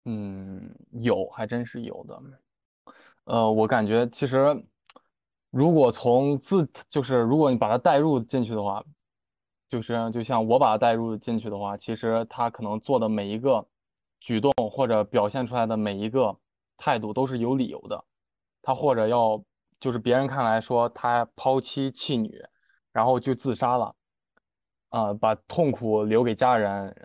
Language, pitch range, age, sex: Chinese, 110-130 Hz, 20-39, male